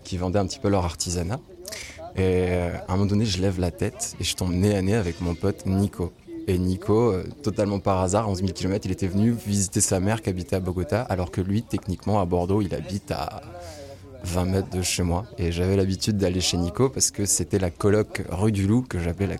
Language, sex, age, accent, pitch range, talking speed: French, male, 20-39, French, 90-110 Hz, 235 wpm